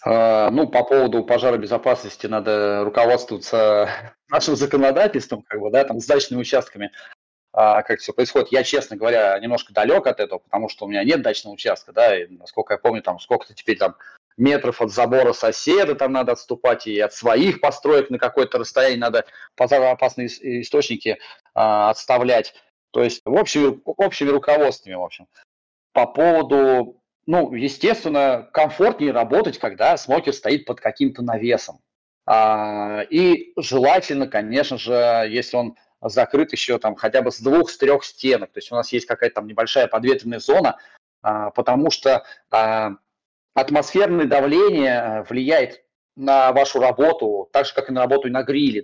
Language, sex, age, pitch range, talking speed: Russian, male, 30-49, 115-140 Hz, 150 wpm